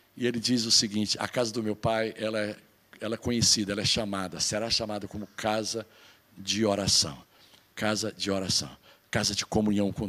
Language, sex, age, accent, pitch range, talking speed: Portuguese, male, 60-79, Brazilian, 115-170 Hz, 180 wpm